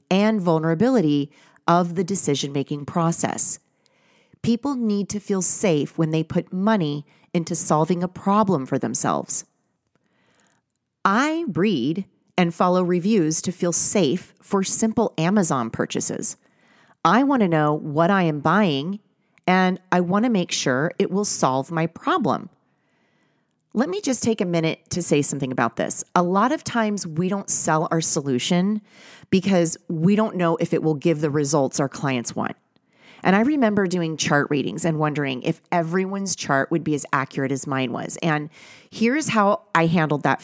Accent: American